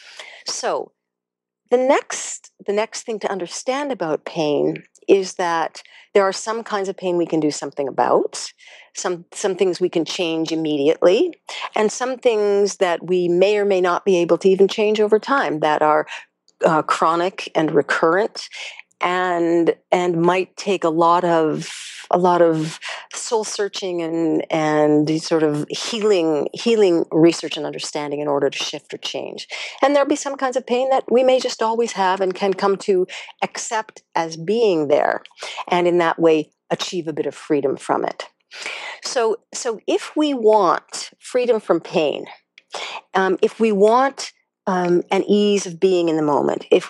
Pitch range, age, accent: 165-215 Hz, 50-69, American